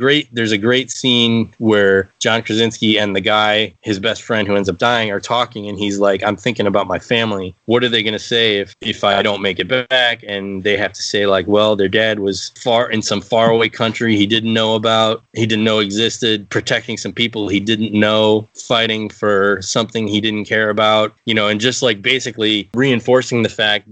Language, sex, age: English, male, 20-39